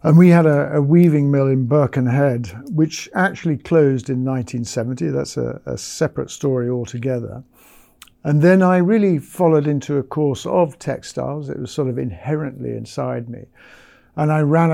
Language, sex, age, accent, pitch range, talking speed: English, male, 50-69, British, 125-155 Hz, 165 wpm